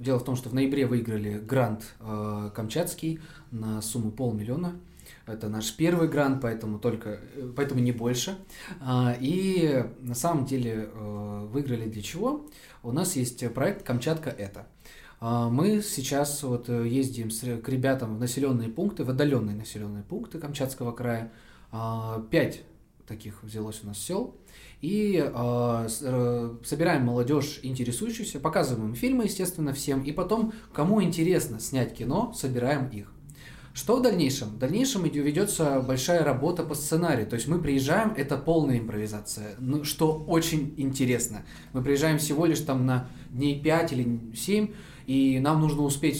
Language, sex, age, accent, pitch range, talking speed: Russian, male, 20-39, native, 120-160 Hz, 140 wpm